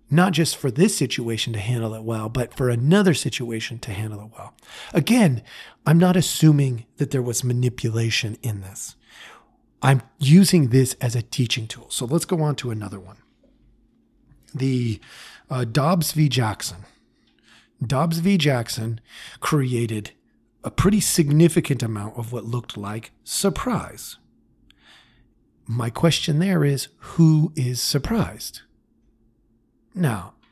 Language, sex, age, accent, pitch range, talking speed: English, male, 40-59, American, 115-165 Hz, 130 wpm